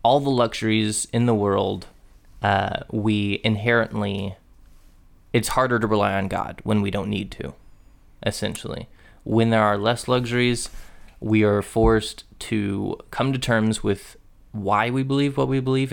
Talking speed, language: 150 wpm, English